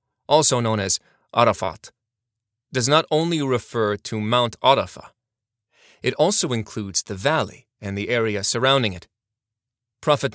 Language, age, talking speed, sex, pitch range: English, 30-49, 130 wpm, male, 105-125 Hz